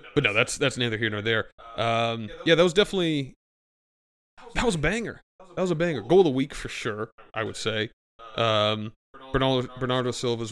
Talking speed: 205 wpm